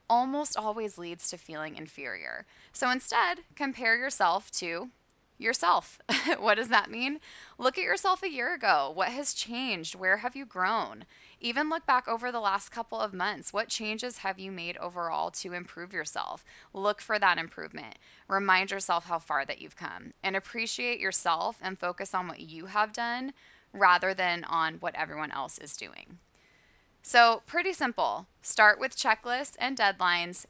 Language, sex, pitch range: English, female, 175-235 Hz